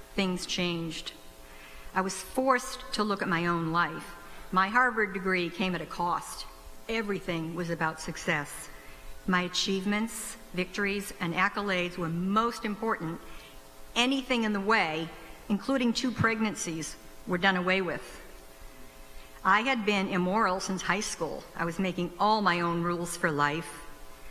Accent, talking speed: American, 140 wpm